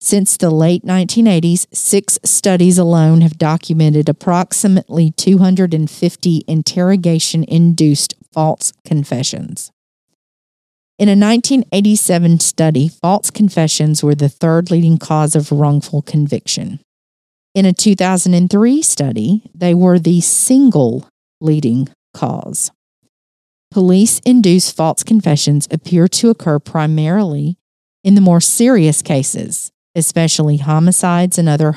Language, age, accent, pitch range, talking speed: English, 50-69, American, 155-190 Hz, 100 wpm